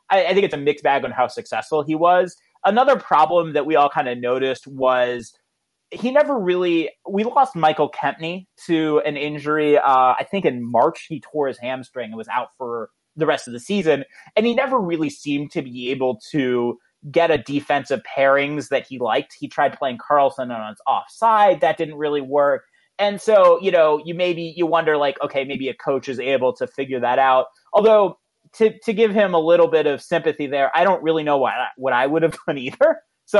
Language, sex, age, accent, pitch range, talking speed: English, male, 30-49, American, 135-185 Hz, 210 wpm